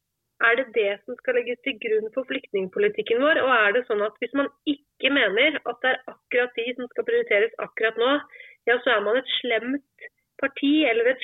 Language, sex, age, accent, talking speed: English, female, 30-49, Swedish, 220 wpm